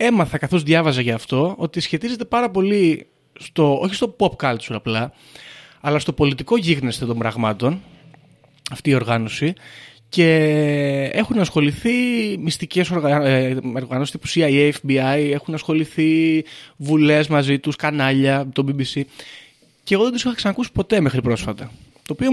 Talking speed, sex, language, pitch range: 135 wpm, male, Greek, 130-175 Hz